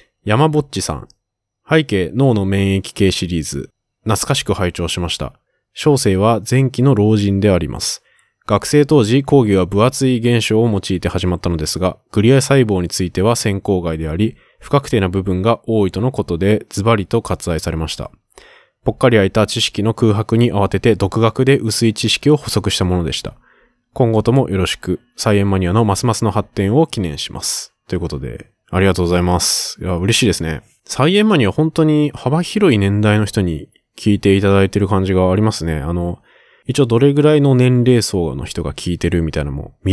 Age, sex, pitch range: 20-39, male, 90-115 Hz